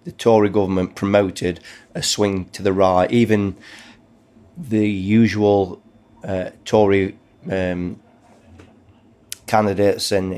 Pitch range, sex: 95-110 Hz, male